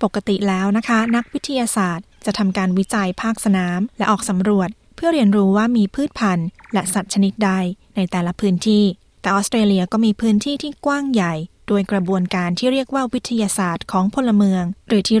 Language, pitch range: Thai, 190-225 Hz